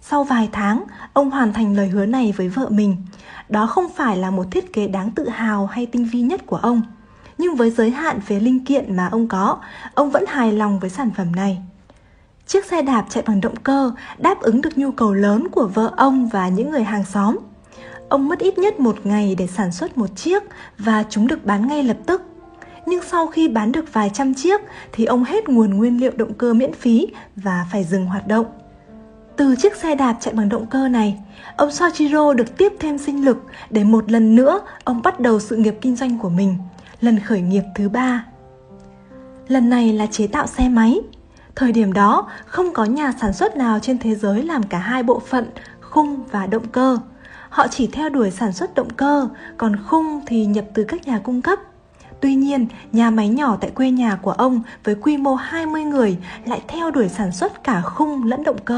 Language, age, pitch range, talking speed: Vietnamese, 20-39, 210-275 Hz, 215 wpm